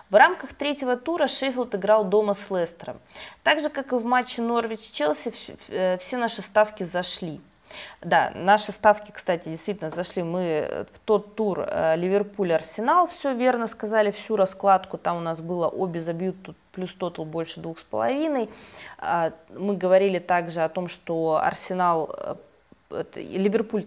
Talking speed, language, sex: 145 wpm, Russian, female